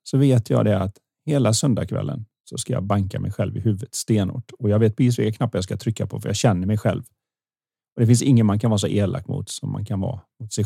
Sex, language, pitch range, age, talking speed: male, Swedish, 105-130 Hz, 30-49, 265 wpm